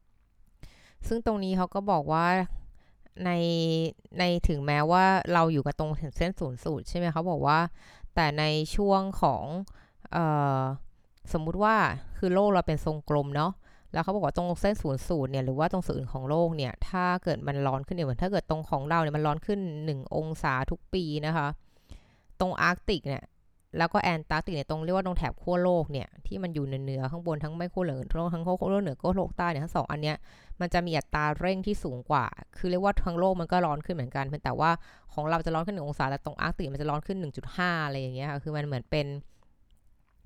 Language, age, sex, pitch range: Thai, 20-39, female, 145-180 Hz